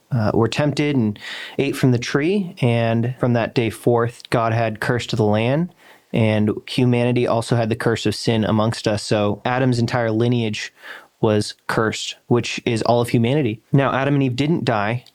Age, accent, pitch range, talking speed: 30-49, American, 110-125 Hz, 180 wpm